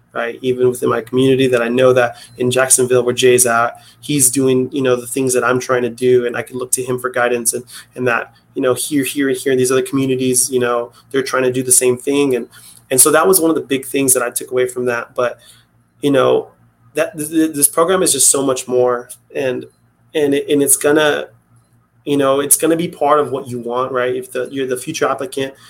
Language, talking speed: English, 245 wpm